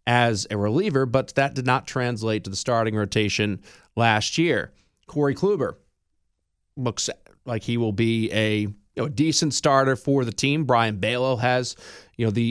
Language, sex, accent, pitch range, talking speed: English, male, American, 110-140 Hz, 170 wpm